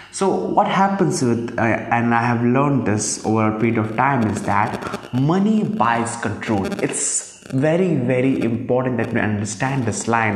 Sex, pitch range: male, 115-160 Hz